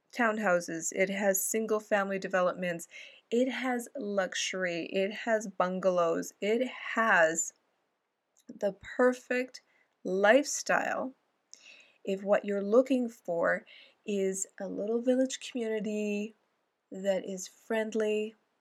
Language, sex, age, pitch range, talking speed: English, female, 20-39, 195-235 Hz, 95 wpm